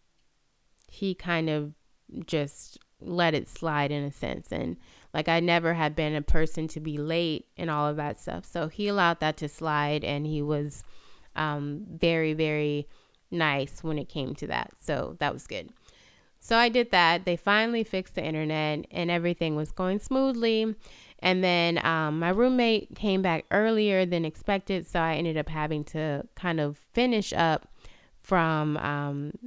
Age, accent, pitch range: 20-39, American, 150-190 Hz